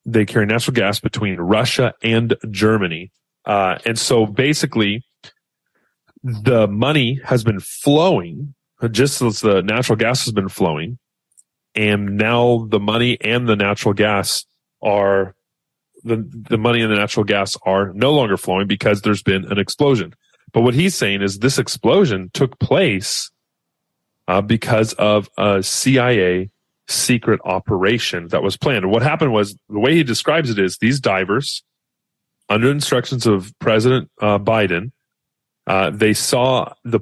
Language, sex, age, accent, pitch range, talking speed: English, male, 30-49, American, 105-130 Hz, 145 wpm